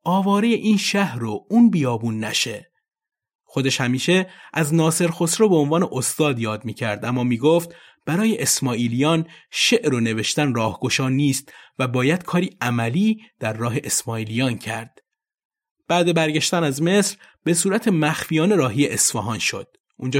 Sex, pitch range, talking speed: male, 120-175 Hz, 135 wpm